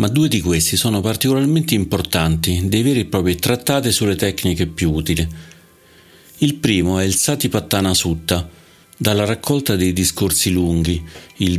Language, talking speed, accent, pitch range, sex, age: Italian, 145 wpm, native, 85-105 Hz, male, 40-59